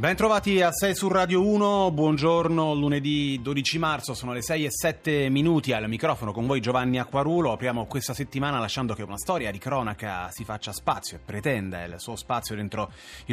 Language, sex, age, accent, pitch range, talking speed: Italian, male, 30-49, native, 110-145 Hz, 190 wpm